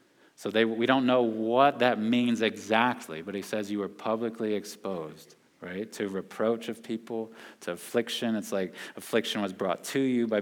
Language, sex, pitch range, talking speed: English, male, 105-120 Hz, 175 wpm